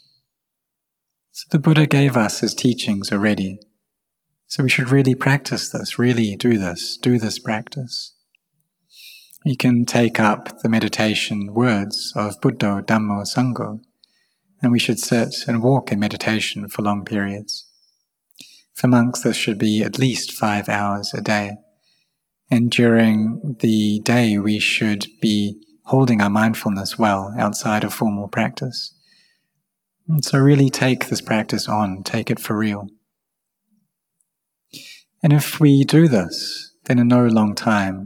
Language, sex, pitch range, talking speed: English, male, 105-135 Hz, 140 wpm